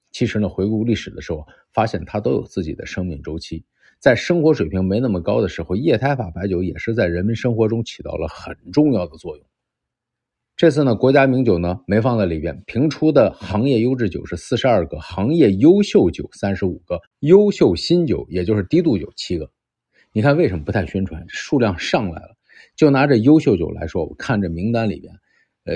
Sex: male